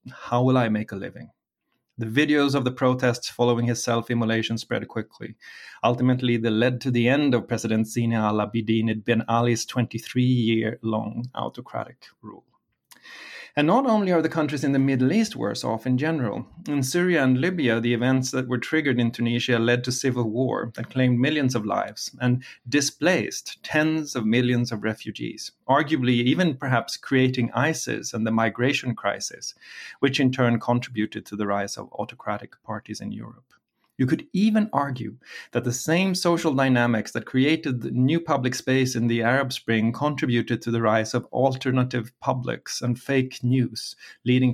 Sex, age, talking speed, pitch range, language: male, 30-49, 170 wpm, 115-140 Hz, English